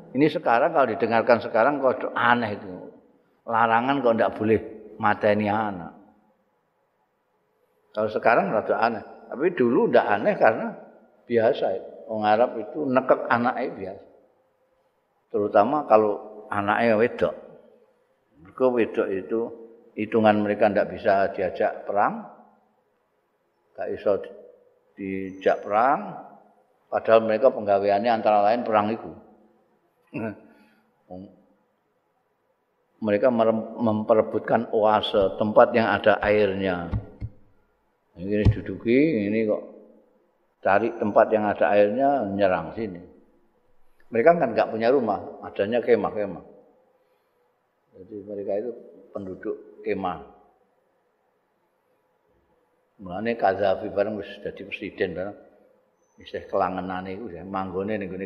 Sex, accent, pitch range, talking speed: male, native, 100-130 Hz, 95 wpm